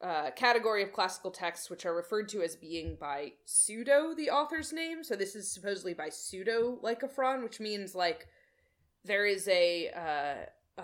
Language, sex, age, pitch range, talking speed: English, female, 20-39, 155-225 Hz, 165 wpm